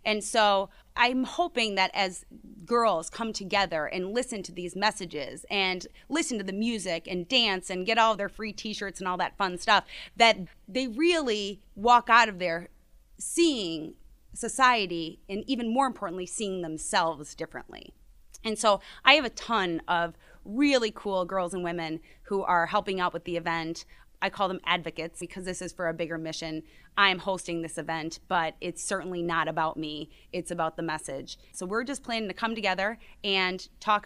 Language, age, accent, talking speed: English, 30-49, American, 180 wpm